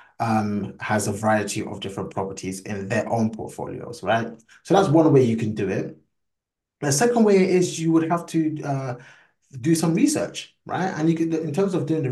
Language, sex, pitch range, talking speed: English, male, 110-140 Hz, 205 wpm